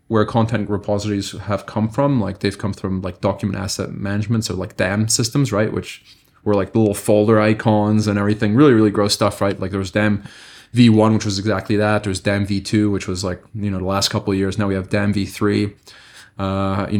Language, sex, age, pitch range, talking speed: English, male, 20-39, 100-110 Hz, 220 wpm